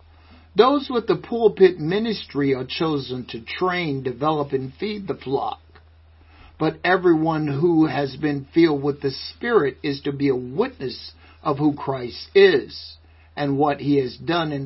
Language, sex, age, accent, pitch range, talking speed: English, male, 60-79, American, 105-155 Hz, 155 wpm